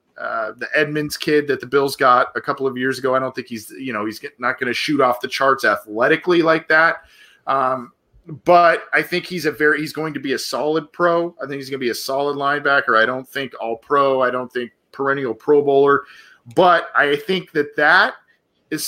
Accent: American